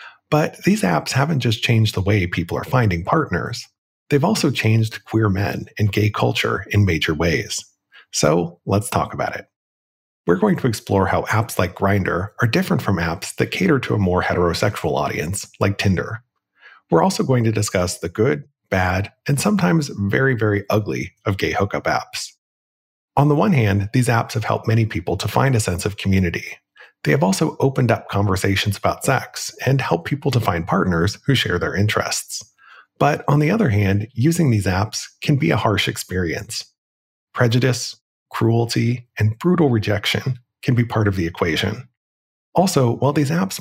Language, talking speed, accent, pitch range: English, 175 wpm, American, 95-130 Hz